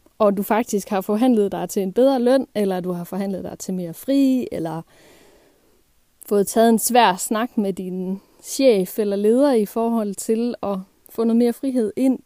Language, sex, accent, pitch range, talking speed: Danish, female, native, 195-255 Hz, 185 wpm